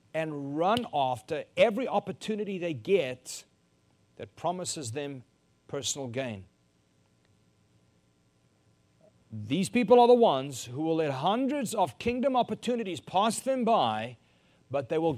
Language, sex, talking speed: English, male, 120 wpm